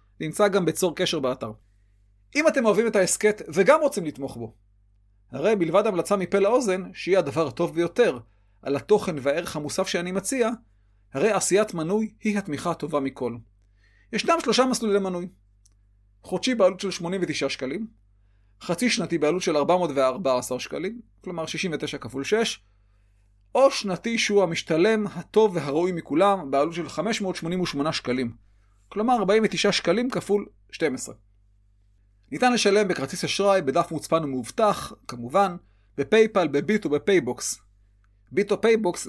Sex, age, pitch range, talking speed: male, 30-49, 120-200 Hz, 130 wpm